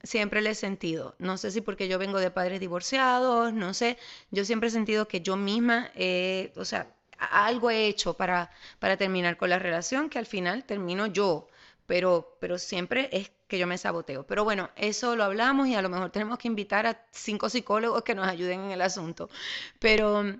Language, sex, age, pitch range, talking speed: Spanish, female, 30-49, 185-230 Hz, 205 wpm